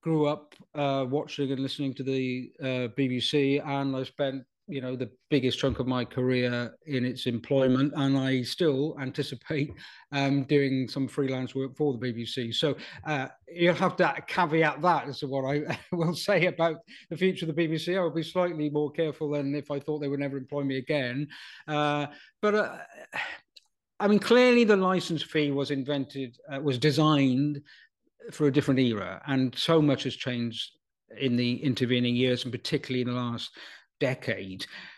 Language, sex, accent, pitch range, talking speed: English, male, British, 135-155 Hz, 180 wpm